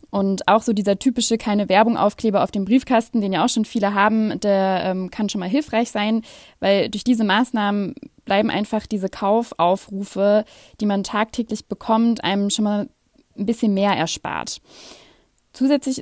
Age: 20-39